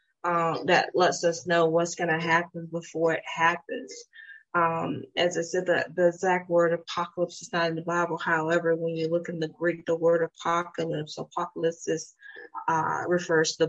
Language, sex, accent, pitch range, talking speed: English, female, American, 165-175 Hz, 180 wpm